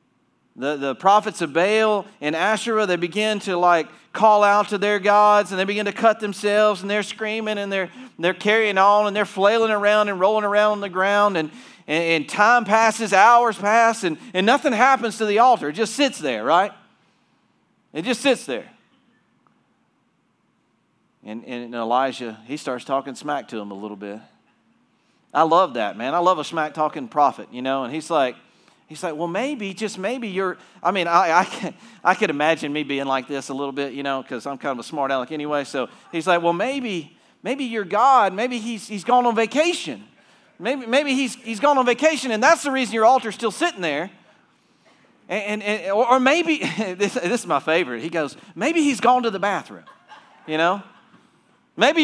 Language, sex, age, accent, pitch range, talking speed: English, male, 40-59, American, 165-235 Hz, 200 wpm